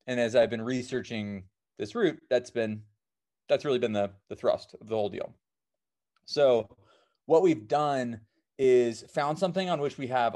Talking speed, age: 175 wpm, 30-49